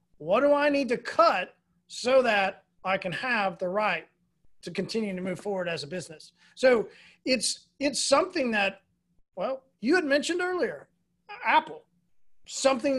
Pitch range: 180-255 Hz